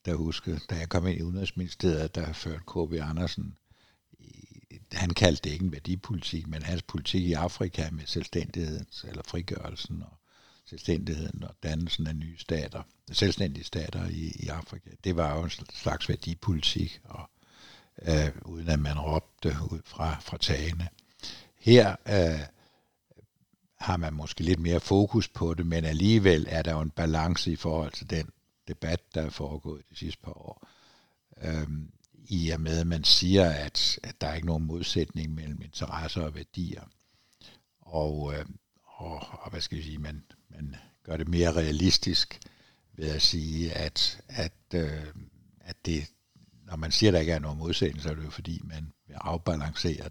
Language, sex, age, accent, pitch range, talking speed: Danish, male, 60-79, native, 80-95 Hz, 165 wpm